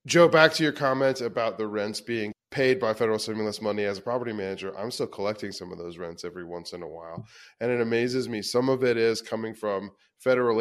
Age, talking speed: 20-39, 230 wpm